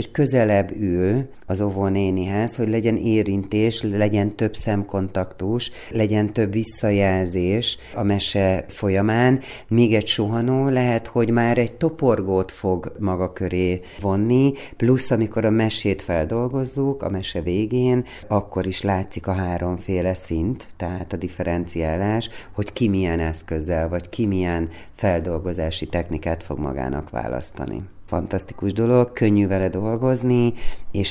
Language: Hungarian